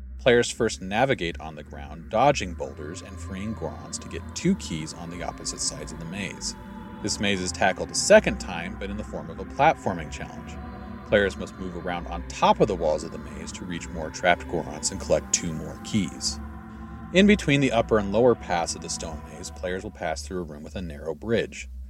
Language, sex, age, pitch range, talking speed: English, male, 40-59, 80-105 Hz, 220 wpm